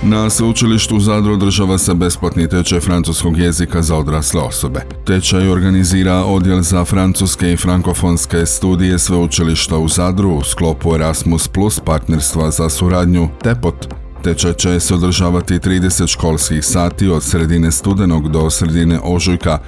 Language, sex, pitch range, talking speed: Croatian, male, 80-95 Hz, 130 wpm